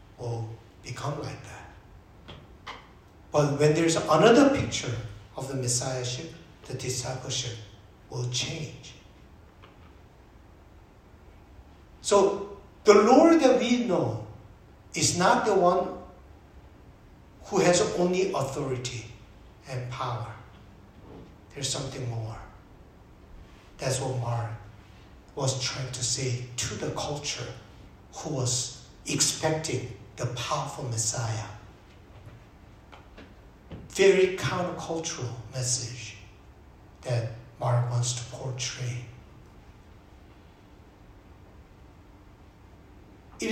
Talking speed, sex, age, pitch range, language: 80 wpm, male, 60-79, 105-145 Hz, English